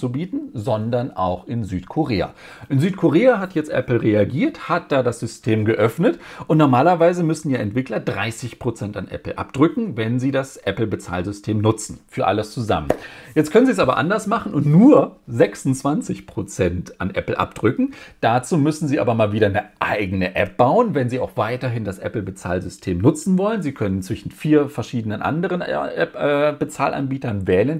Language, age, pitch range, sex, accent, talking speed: German, 40-59, 110-155 Hz, male, German, 160 wpm